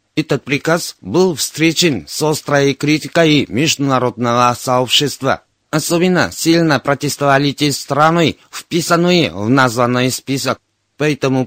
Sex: male